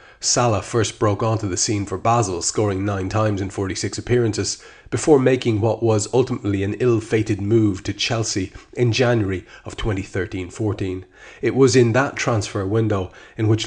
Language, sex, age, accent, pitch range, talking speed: English, male, 30-49, Irish, 95-115 Hz, 160 wpm